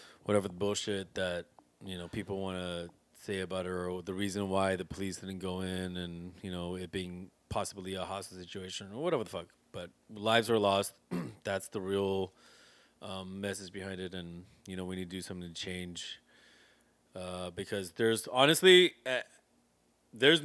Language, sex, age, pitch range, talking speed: English, male, 30-49, 95-115 Hz, 180 wpm